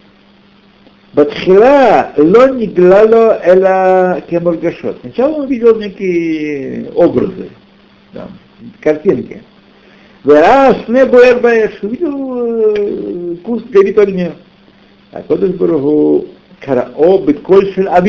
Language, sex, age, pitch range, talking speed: Russian, male, 60-79, 145-230 Hz, 55 wpm